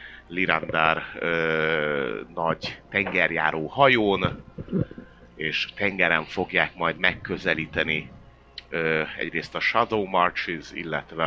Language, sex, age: Hungarian, male, 30-49